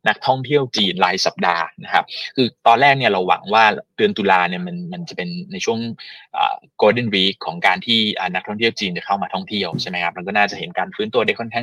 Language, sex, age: Thai, male, 20-39